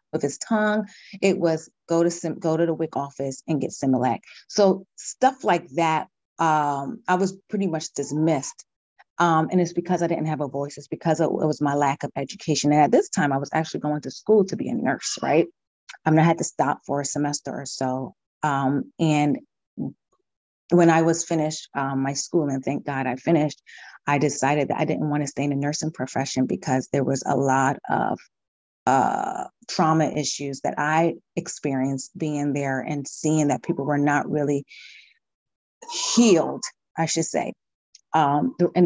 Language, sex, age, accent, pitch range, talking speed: English, female, 30-49, American, 145-170 Hz, 185 wpm